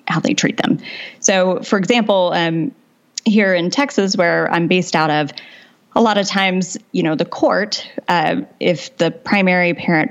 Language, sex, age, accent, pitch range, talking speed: English, female, 20-39, American, 165-215 Hz, 170 wpm